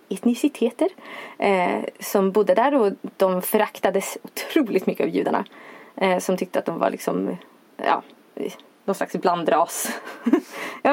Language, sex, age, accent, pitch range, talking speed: Swedish, female, 20-39, native, 185-235 Hz, 130 wpm